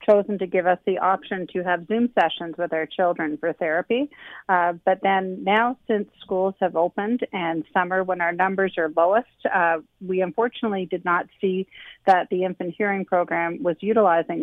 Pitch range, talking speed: 170-195 Hz, 180 wpm